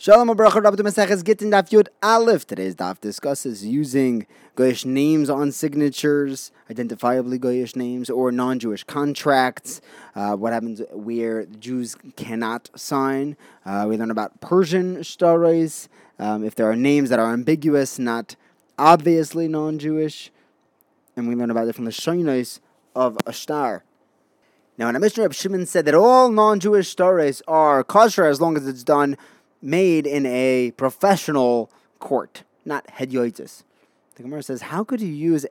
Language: English